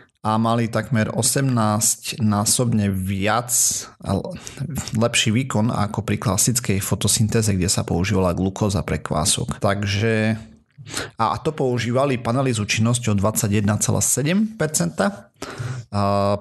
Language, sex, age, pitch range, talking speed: Slovak, male, 30-49, 100-120 Hz, 100 wpm